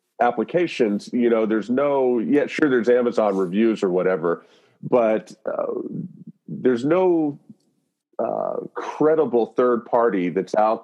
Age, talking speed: 40-59, 125 wpm